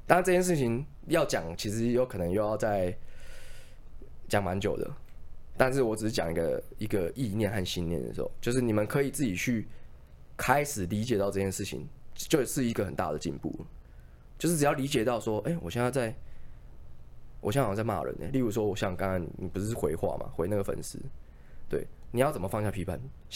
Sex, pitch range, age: male, 85-125 Hz, 20-39